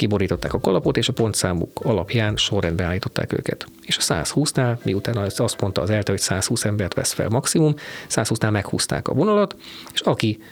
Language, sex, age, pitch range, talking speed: Hungarian, male, 40-59, 100-125 Hz, 170 wpm